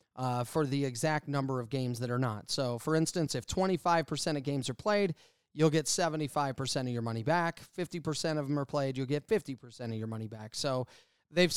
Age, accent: 30-49, American